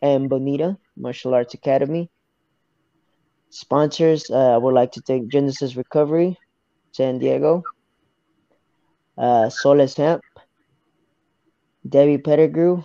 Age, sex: 20-39, male